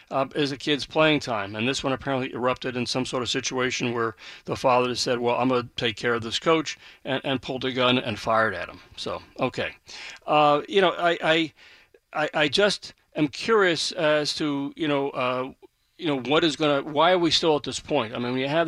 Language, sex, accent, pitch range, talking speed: English, male, American, 130-160 Hz, 235 wpm